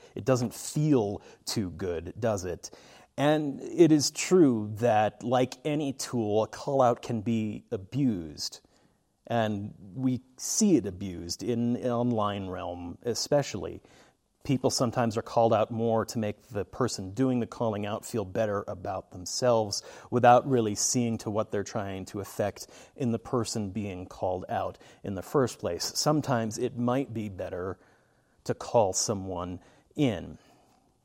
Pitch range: 105-130 Hz